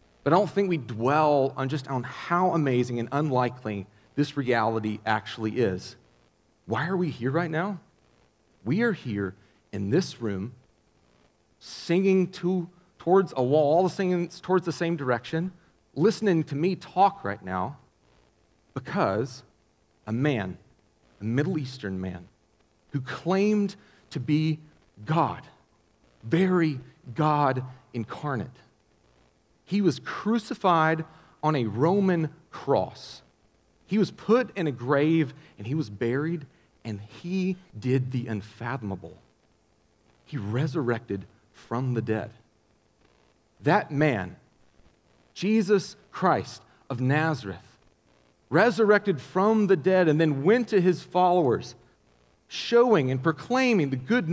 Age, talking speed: 40-59, 120 wpm